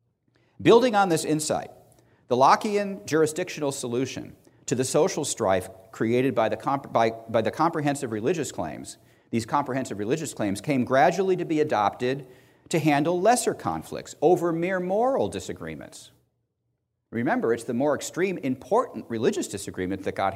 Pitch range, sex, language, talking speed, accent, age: 110-150 Hz, male, English, 145 wpm, American, 40-59